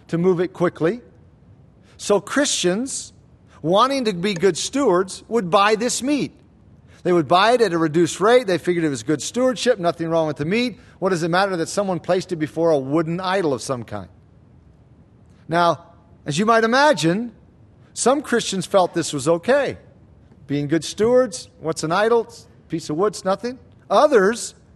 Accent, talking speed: American, 175 wpm